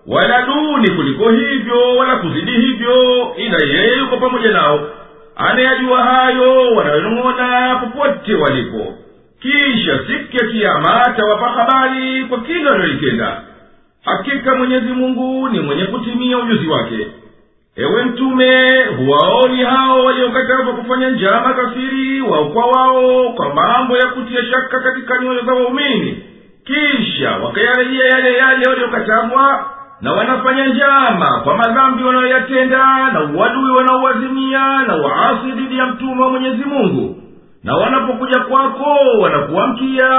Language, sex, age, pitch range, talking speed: Swahili, male, 50-69, 245-265 Hz, 115 wpm